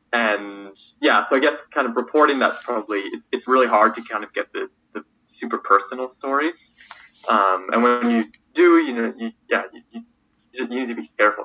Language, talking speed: English, 205 wpm